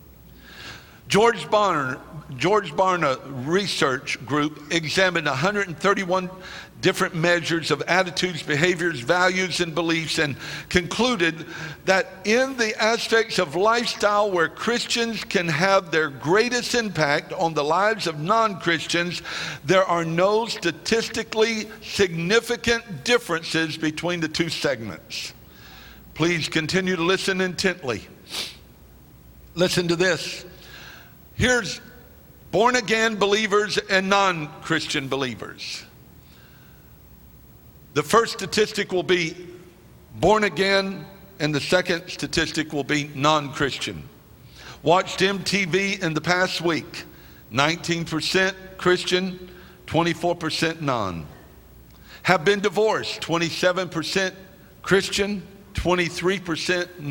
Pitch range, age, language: 155-195 Hz, 60-79, English